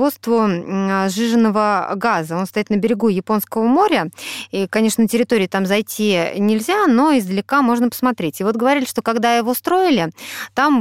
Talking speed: 150 wpm